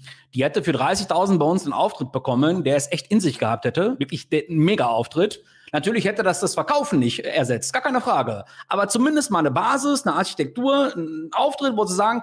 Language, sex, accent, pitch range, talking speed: German, male, German, 170-245 Hz, 200 wpm